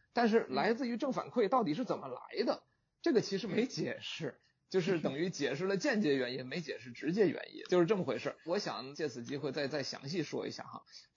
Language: Chinese